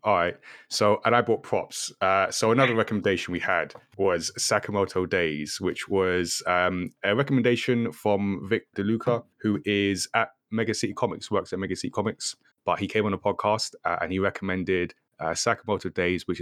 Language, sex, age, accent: English, male, 20-39, British